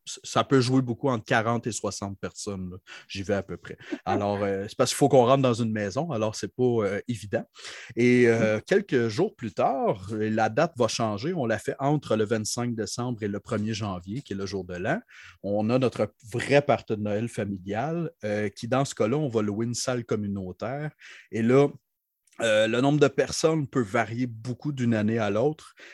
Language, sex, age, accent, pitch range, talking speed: English, male, 30-49, Canadian, 105-130 Hz, 205 wpm